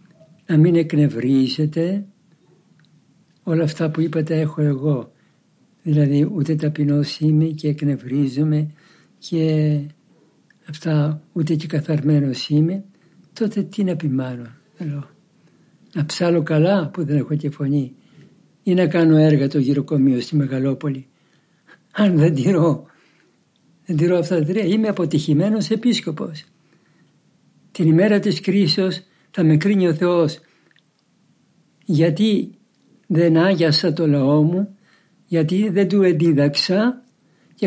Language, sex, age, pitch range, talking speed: Greek, male, 60-79, 155-185 Hz, 115 wpm